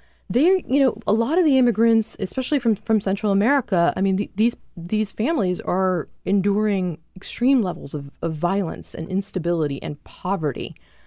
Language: English